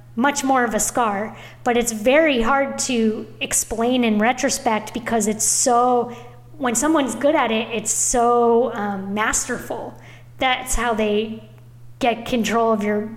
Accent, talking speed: American, 145 wpm